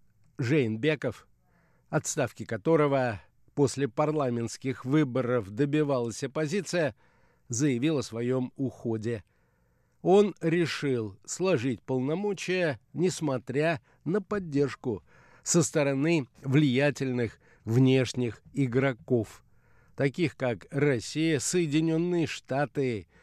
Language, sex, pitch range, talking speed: Russian, male, 120-155 Hz, 75 wpm